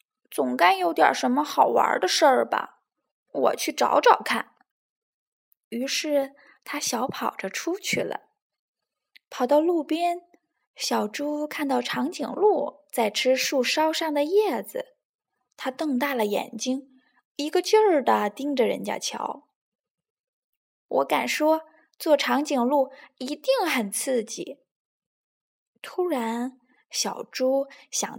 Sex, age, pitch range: female, 10-29, 255-340 Hz